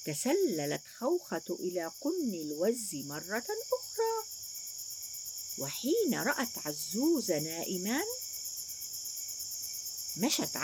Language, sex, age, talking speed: Arabic, female, 50-69, 70 wpm